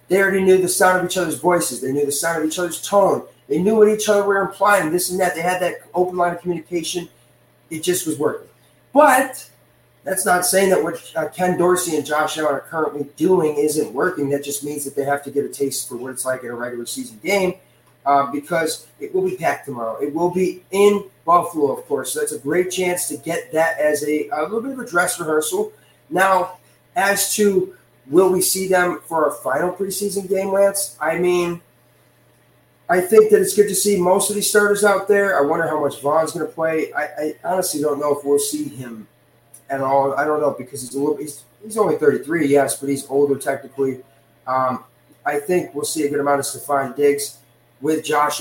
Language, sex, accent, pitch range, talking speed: English, male, American, 140-185 Hz, 220 wpm